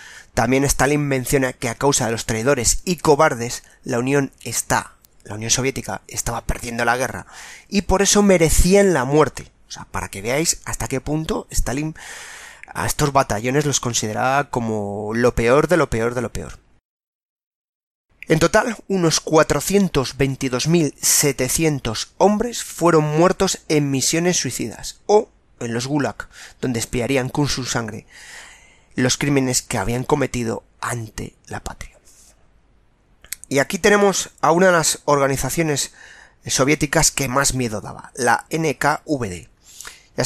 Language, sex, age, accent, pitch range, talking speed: Spanish, male, 30-49, Spanish, 120-165 Hz, 140 wpm